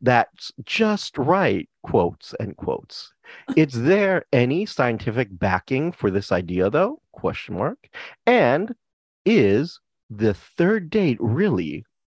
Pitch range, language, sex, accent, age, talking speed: 100-135 Hz, English, male, American, 40-59, 115 wpm